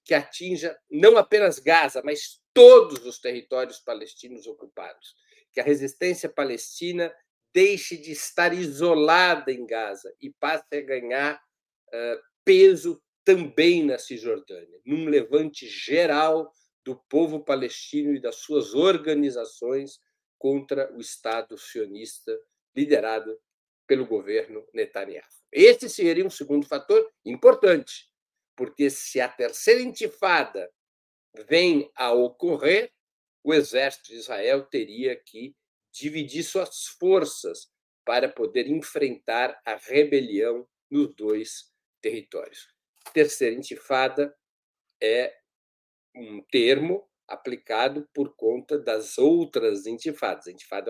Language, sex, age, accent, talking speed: Portuguese, male, 50-69, Brazilian, 105 wpm